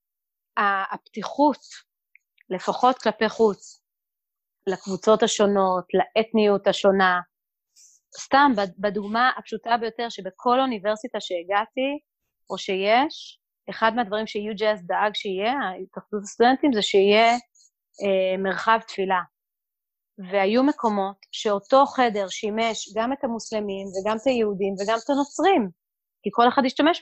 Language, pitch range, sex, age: Hebrew, 195-245 Hz, female, 30-49